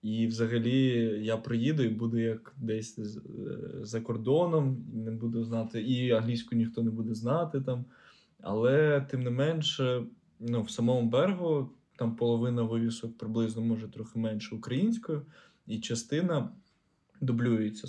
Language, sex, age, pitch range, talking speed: Ukrainian, male, 20-39, 110-125 Hz, 135 wpm